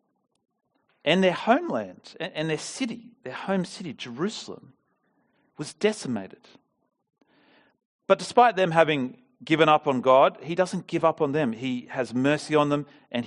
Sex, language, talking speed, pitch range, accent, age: male, English, 145 wpm, 125-185 Hz, Australian, 40-59